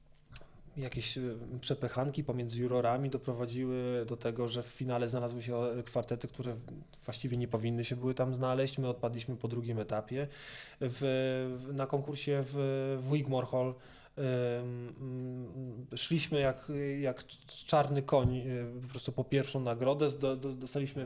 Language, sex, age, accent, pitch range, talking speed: Polish, male, 20-39, native, 125-145 Hz, 145 wpm